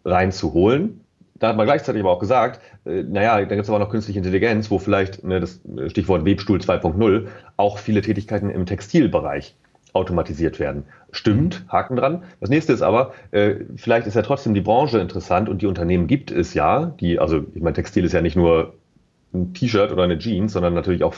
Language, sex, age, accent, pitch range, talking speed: German, male, 30-49, German, 90-105 Hz, 190 wpm